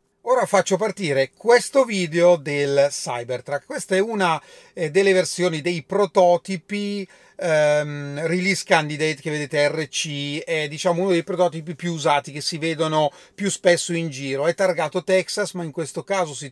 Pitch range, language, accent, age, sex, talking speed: 145-185 Hz, Italian, native, 30-49, male, 145 wpm